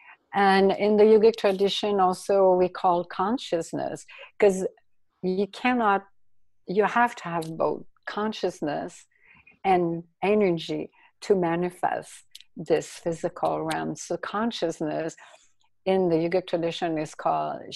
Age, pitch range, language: 60-79, 165-205 Hz, English